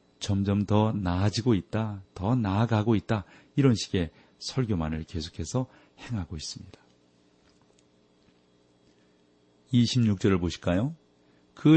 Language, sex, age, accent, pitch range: Korean, male, 40-59, native, 85-115 Hz